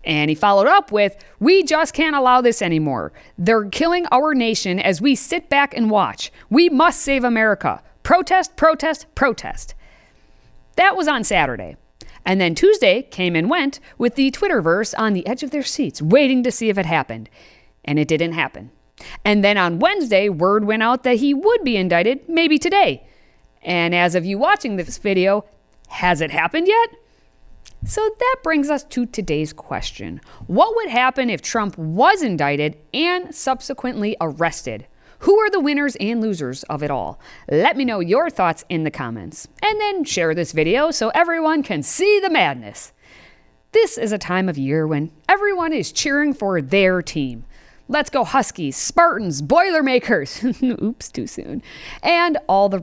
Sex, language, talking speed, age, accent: female, English, 170 wpm, 50-69, American